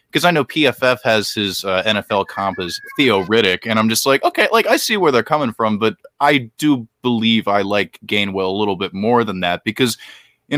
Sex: male